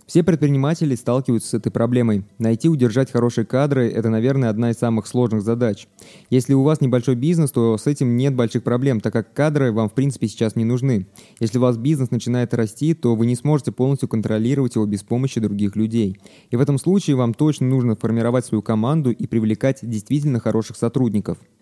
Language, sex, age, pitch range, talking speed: Russian, male, 20-39, 115-140 Hz, 195 wpm